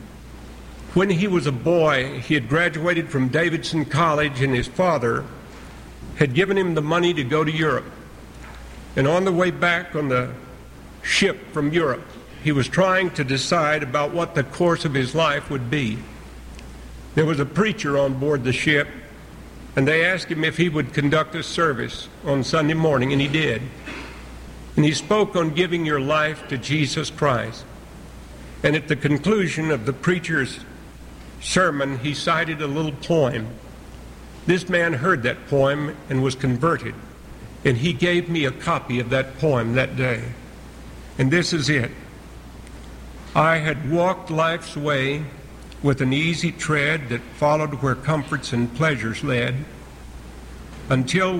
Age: 60-79